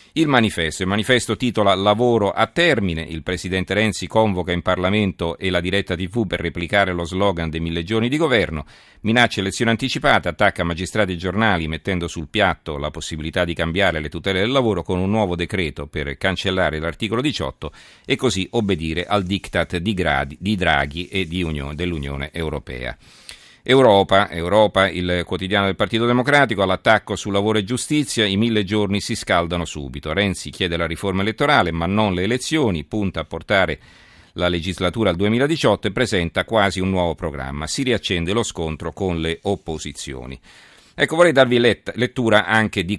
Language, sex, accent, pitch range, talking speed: Italian, male, native, 85-105 Hz, 165 wpm